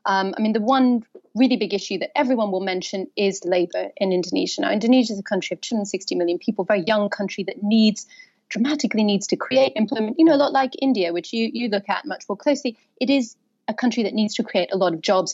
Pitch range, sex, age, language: 195-245 Hz, female, 30-49, English